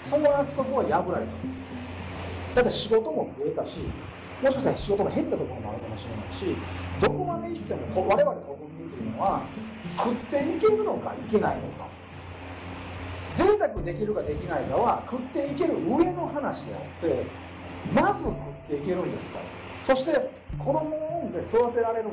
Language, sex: Japanese, male